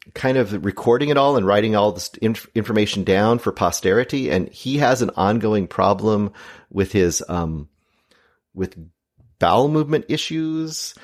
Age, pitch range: 30-49, 95-135 Hz